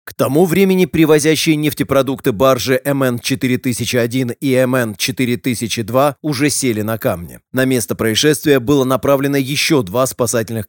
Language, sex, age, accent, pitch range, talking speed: Russian, male, 30-49, native, 115-145 Hz, 120 wpm